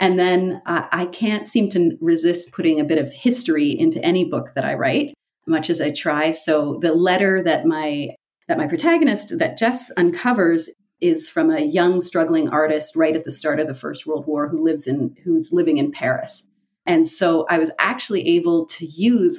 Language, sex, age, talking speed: English, female, 30-49, 200 wpm